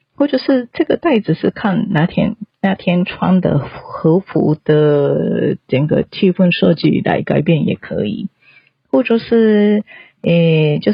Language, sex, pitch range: Japanese, female, 165-205 Hz